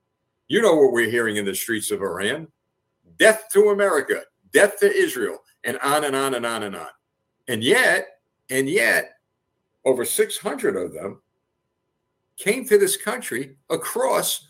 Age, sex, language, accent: 60-79, male, English, American